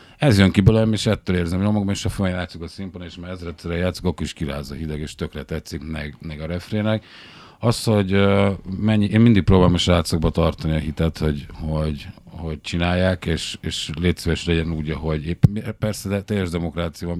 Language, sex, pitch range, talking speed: Hungarian, male, 80-100 Hz, 200 wpm